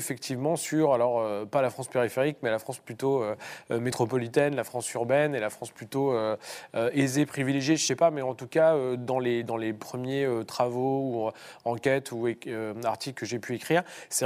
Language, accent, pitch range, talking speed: French, French, 115-145 Hz, 215 wpm